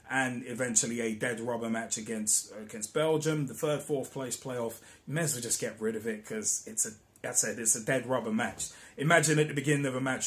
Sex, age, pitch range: male, 20-39, 115-155 Hz